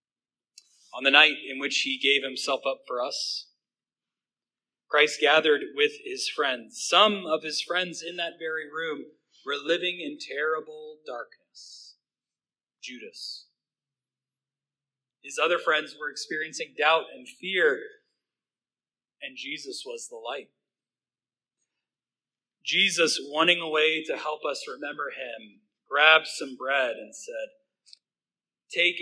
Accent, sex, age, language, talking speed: American, male, 30-49, English, 120 wpm